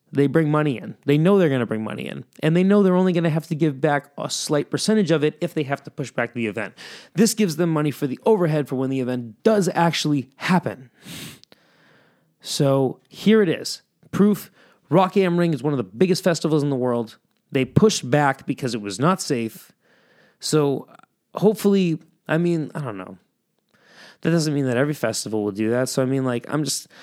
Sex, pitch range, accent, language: male, 130-180 Hz, American, English